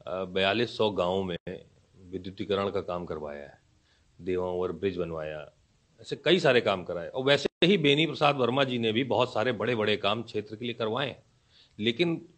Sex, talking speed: male, 180 wpm